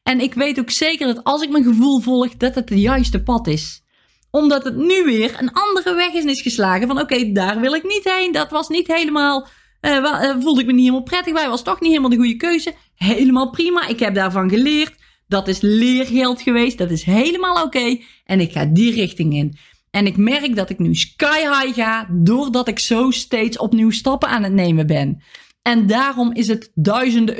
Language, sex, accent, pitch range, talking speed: Dutch, female, Dutch, 220-285 Hz, 225 wpm